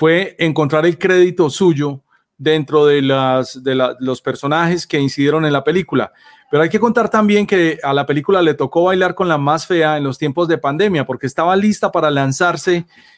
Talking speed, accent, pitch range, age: 195 wpm, Colombian, 145-180 Hz, 30-49